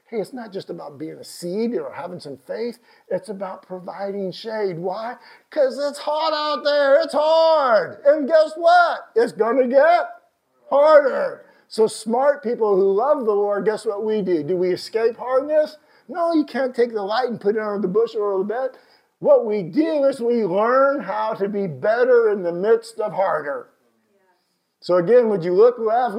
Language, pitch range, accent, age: English, 205-295 Hz, American, 50-69